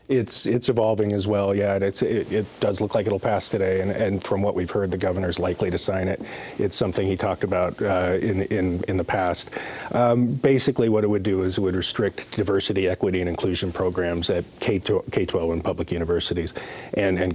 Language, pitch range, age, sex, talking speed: English, 90-105 Hz, 40-59, male, 215 wpm